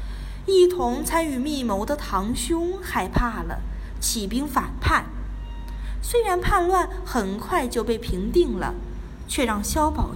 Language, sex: Chinese, female